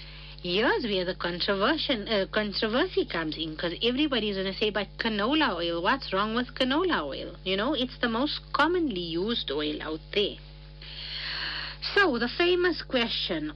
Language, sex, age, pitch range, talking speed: English, female, 50-69, 165-245 Hz, 155 wpm